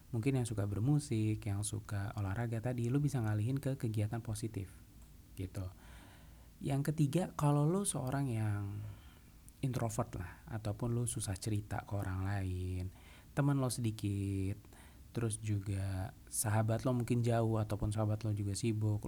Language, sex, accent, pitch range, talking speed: Indonesian, male, native, 100-120 Hz, 140 wpm